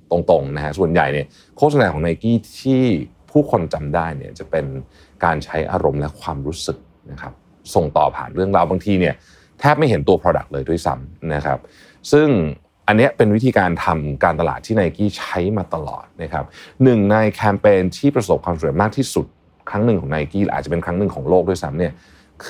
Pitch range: 80-105 Hz